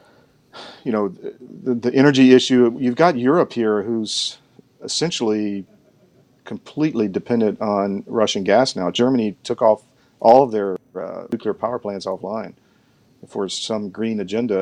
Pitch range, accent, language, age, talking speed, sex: 105-125 Hz, American, English, 40-59, 135 wpm, male